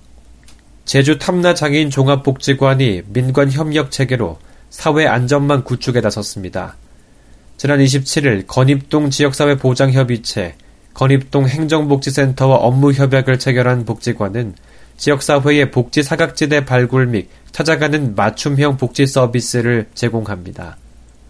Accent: native